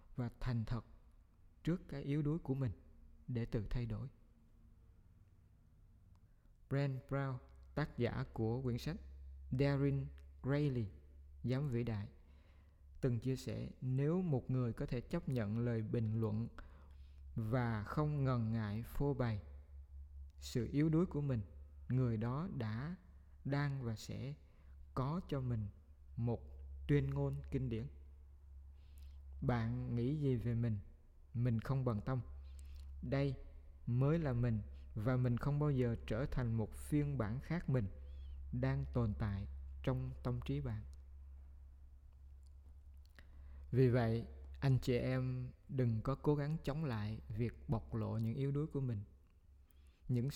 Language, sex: Vietnamese, male